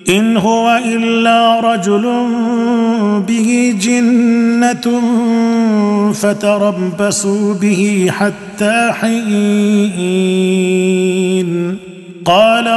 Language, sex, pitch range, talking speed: Arabic, male, 210-240 Hz, 50 wpm